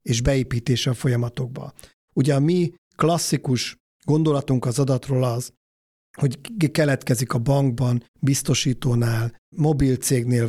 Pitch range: 125-145 Hz